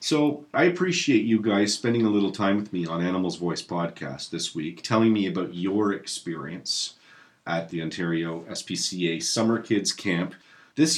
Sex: male